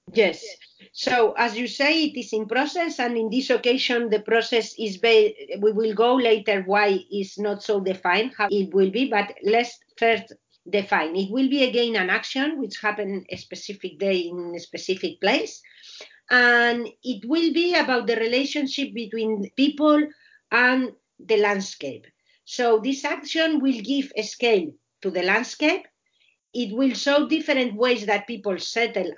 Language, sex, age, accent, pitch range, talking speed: English, female, 40-59, Spanish, 210-270 Hz, 160 wpm